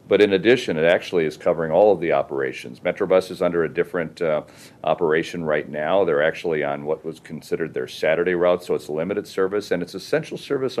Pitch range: 85-105 Hz